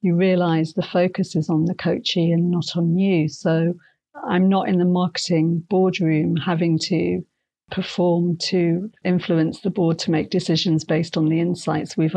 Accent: British